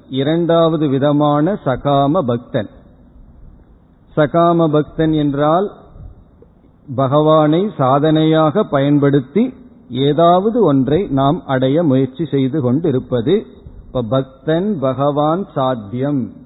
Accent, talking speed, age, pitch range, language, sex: native, 70 wpm, 50-69, 130-165 Hz, Tamil, male